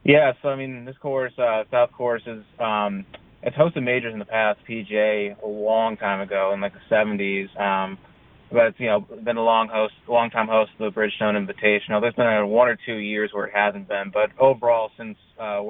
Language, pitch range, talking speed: English, 100-120 Hz, 220 wpm